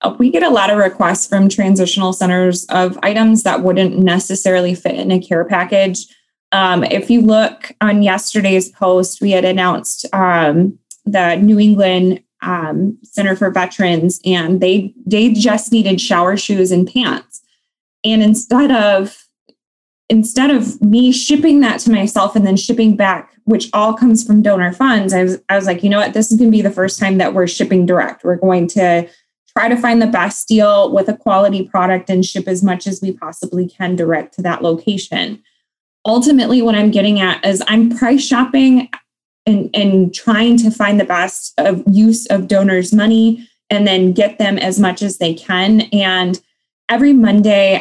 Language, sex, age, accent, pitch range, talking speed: English, female, 20-39, American, 185-220 Hz, 180 wpm